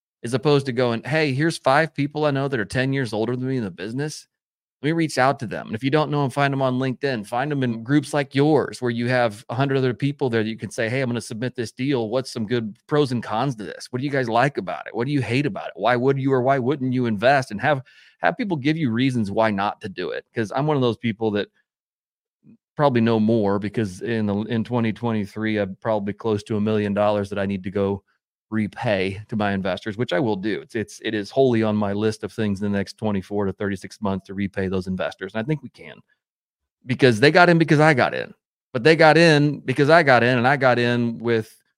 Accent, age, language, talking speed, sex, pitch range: American, 30-49, English, 265 wpm, male, 105-135 Hz